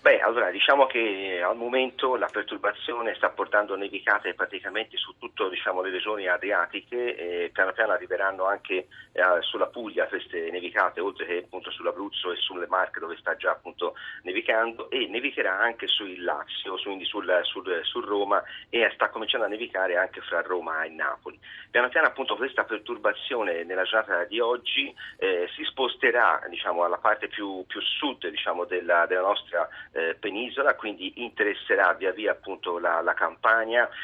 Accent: native